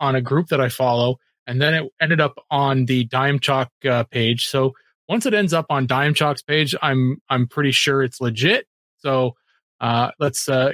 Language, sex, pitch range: English, male, 125-165 Hz